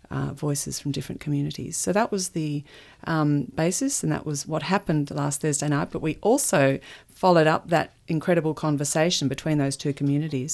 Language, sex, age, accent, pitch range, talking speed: English, female, 40-59, Australian, 140-165 Hz, 175 wpm